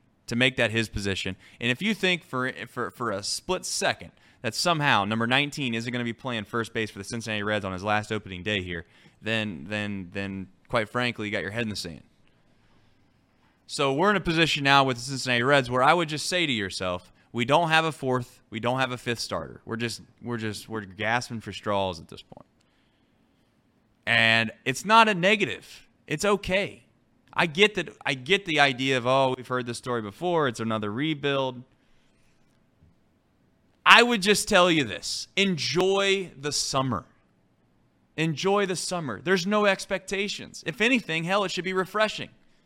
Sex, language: male, English